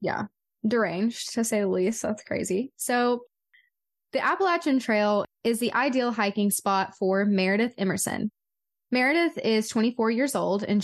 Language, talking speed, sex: English, 145 wpm, female